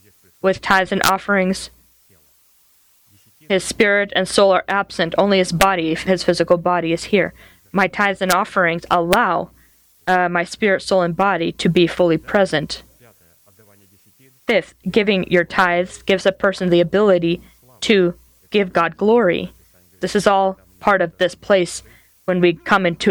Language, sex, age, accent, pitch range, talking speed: English, female, 20-39, American, 170-195 Hz, 150 wpm